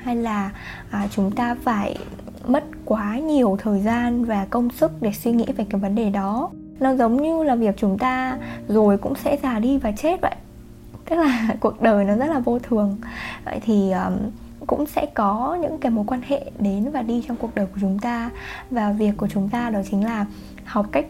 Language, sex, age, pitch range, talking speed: Vietnamese, female, 10-29, 205-260 Hz, 210 wpm